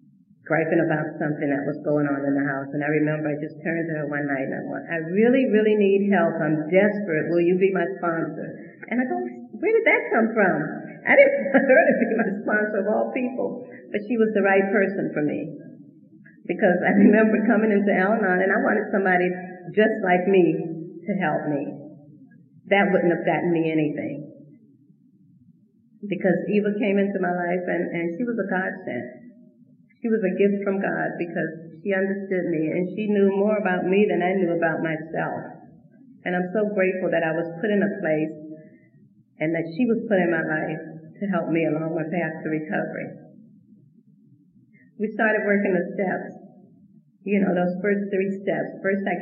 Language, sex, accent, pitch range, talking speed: English, female, American, 160-205 Hz, 190 wpm